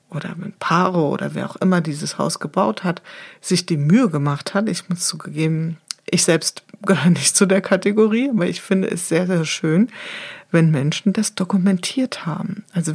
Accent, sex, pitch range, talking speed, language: German, female, 175-205 Hz, 180 wpm, German